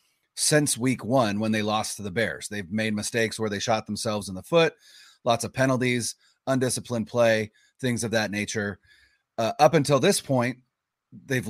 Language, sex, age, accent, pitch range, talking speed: English, male, 30-49, American, 110-145 Hz, 175 wpm